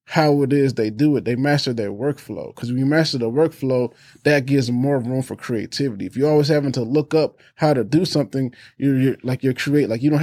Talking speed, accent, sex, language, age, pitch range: 240 wpm, American, male, English, 20-39, 125-150 Hz